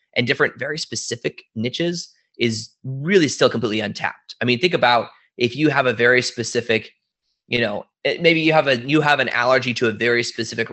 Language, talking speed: English, 190 wpm